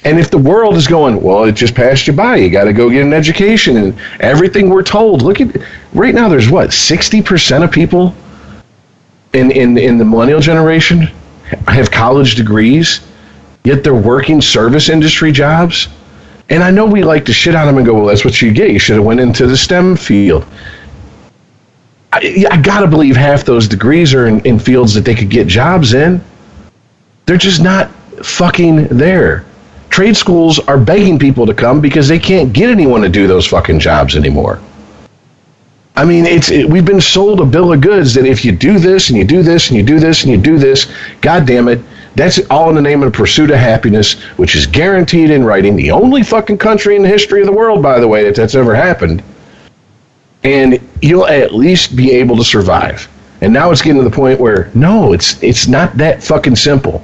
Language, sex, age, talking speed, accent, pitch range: English, male, 40-59, 210 wpm, American, 120-175 Hz